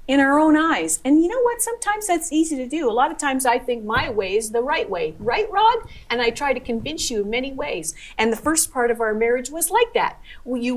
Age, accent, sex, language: 50-69, American, female, English